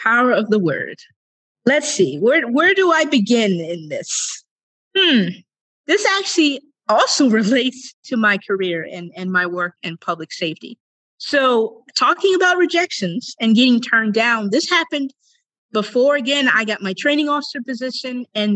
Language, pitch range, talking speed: English, 210-315 Hz, 150 wpm